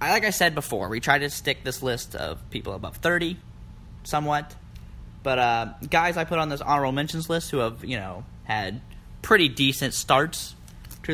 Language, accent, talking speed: English, American, 185 wpm